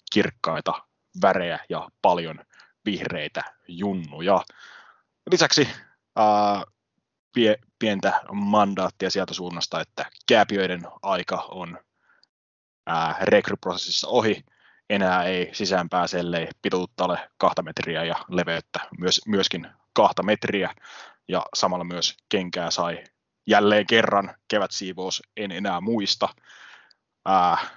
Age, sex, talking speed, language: 20-39, male, 100 wpm, English